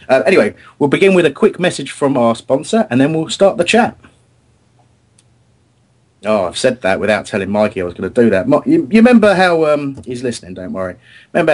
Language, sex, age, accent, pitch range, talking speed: English, male, 30-49, British, 100-130 Hz, 215 wpm